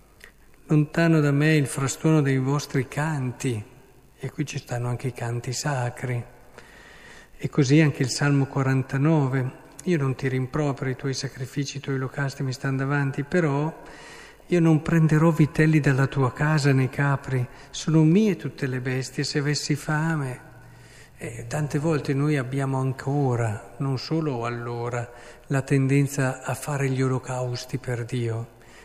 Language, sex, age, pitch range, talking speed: Italian, male, 50-69, 130-155 Hz, 145 wpm